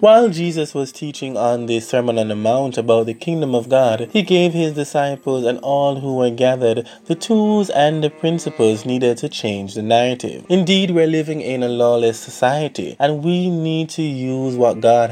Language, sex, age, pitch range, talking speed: English, male, 20-39, 115-150 Hz, 190 wpm